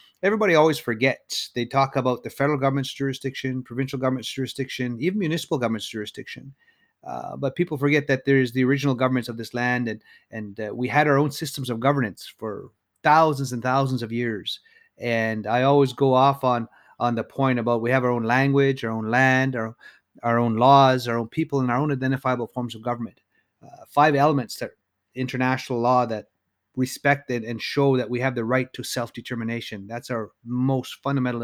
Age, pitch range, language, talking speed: 30-49, 115-140 Hz, English, 190 wpm